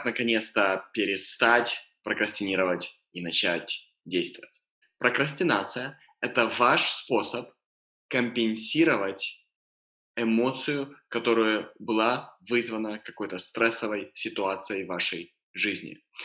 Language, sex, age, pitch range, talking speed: Russian, male, 20-39, 100-125 Hz, 80 wpm